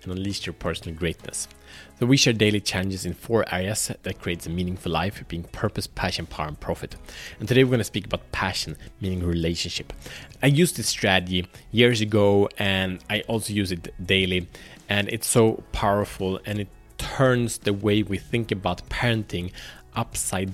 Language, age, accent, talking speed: Swedish, 30-49, Norwegian, 170 wpm